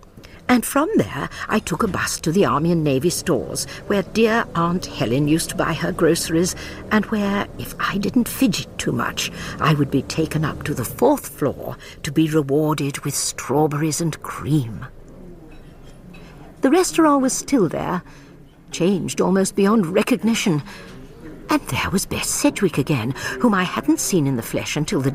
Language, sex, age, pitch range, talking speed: English, female, 60-79, 150-210 Hz, 165 wpm